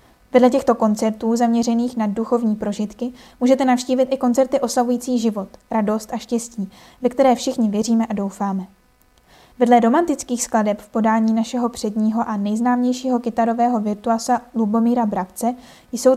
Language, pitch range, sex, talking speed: Czech, 220-250 Hz, female, 135 wpm